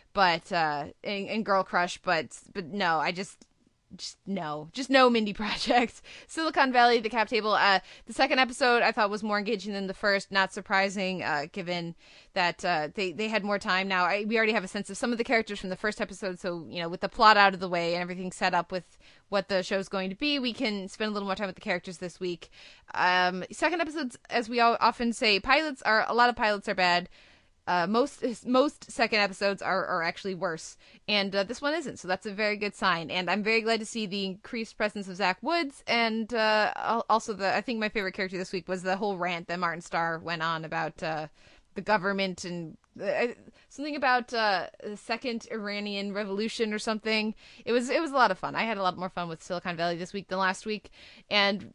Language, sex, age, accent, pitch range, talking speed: English, female, 20-39, American, 185-225 Hz, 230 wpm